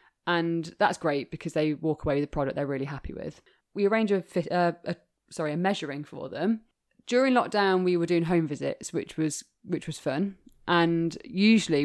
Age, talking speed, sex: 20-39, 195 wpm, female